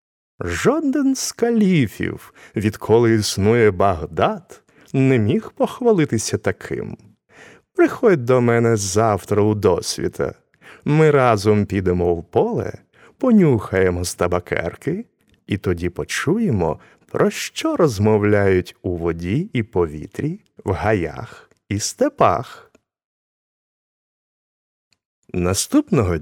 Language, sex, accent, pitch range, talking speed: Ukrainian, male, native, 90-145 Hz, 85 wpm